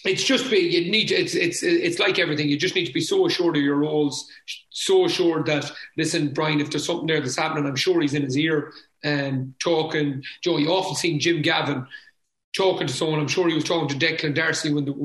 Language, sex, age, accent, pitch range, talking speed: English, male, 30-49, Irish, 150-180 Hz, 235 wpm